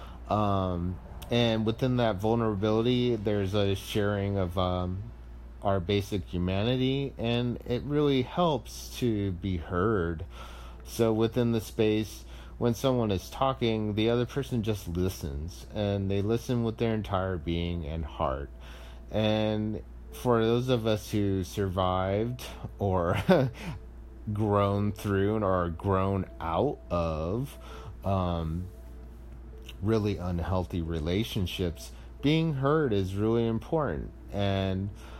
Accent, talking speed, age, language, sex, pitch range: American, 115 wpm, 30-49, English, male, 85-110 Hz